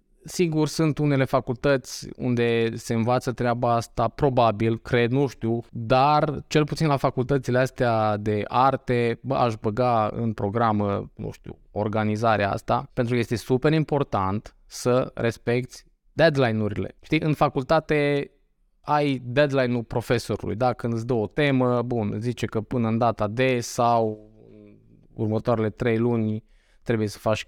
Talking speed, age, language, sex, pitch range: 140 wpm, 20-39, Romanian, male, 110-145 Hz